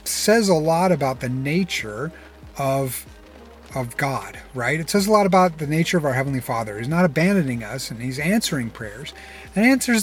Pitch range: 135-185 Hz